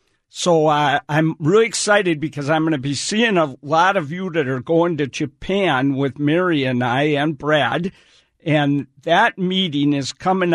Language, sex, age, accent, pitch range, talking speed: English, male, 60-79, American, 150-195 Hz, 170 wpm